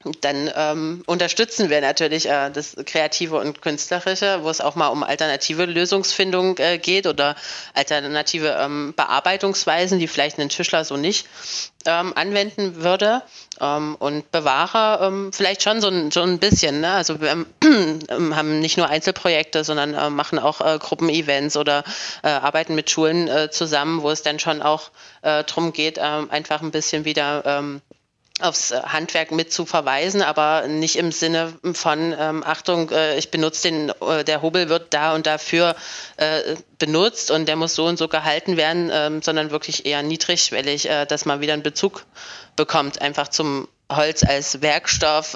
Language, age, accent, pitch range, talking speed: German, 30-49, German, 145-170 Hz, 170 wpm